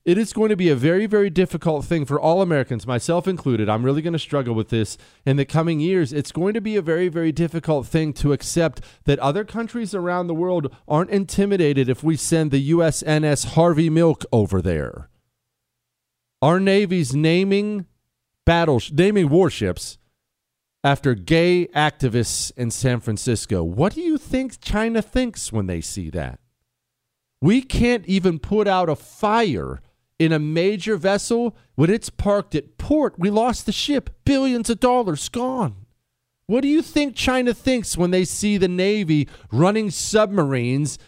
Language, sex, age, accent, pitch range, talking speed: English, male, 40-59, American, 135-205 Hz, 165 wpm